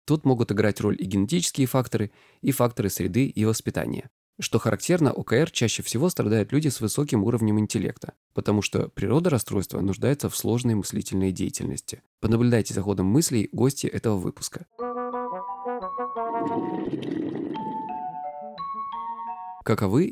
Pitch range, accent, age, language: 100-145 Hz, native, 20-39, Russian